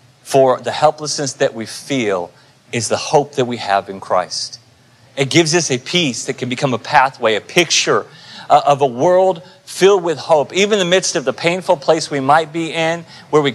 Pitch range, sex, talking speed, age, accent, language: 125-155 Hz, male, 210 wpm, 40-59, American, English